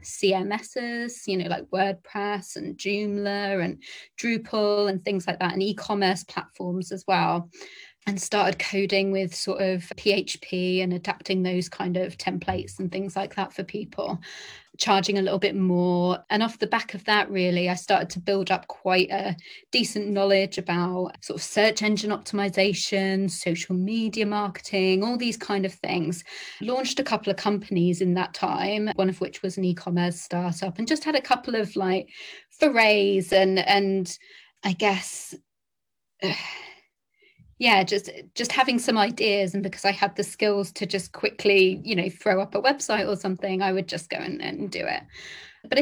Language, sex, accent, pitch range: English, female, British, 185-210 Hz